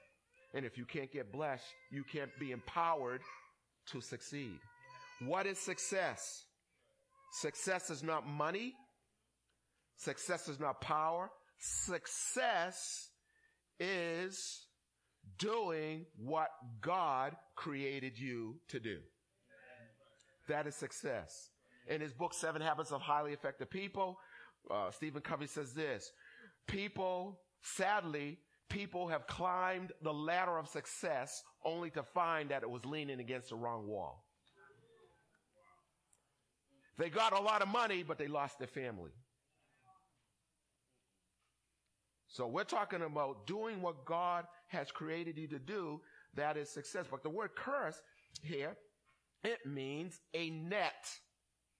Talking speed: 120 wpm